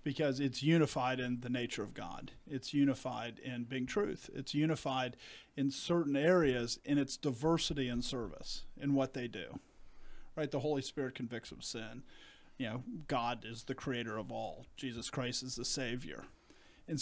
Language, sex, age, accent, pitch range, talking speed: English, male, 40-59, American, 130-150 Hz, 170 wpm